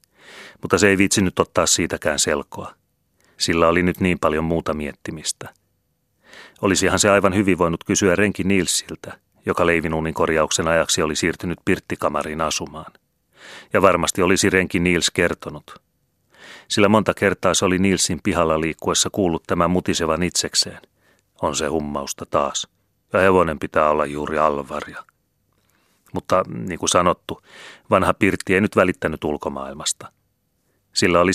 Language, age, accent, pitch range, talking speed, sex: Finnish, 30-49, native, 75-95 Hz, 135 wpm, male